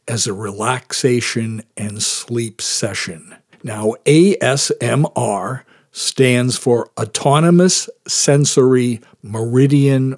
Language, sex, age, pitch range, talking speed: English, male, 60-79, 110-140 Hz, 75 wpm